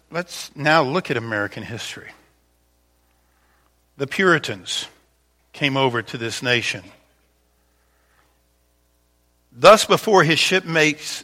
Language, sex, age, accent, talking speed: English, male, 50-69, American, 90 wpm